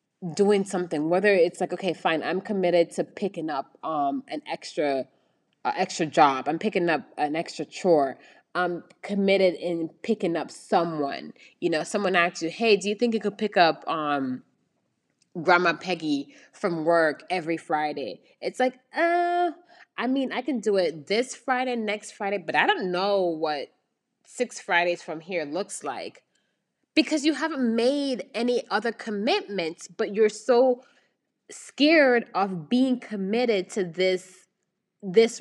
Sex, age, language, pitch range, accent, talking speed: female, 20-39, English, 175-235 Hz, American, 155 wpm